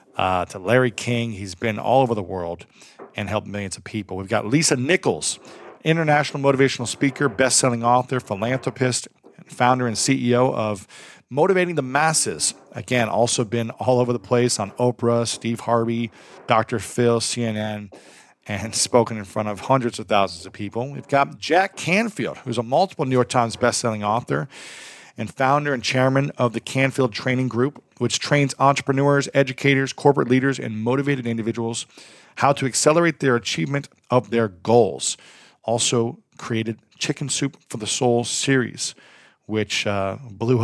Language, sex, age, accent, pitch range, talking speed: English, male, 40-59, American, 110-135 Hz, 160 wpm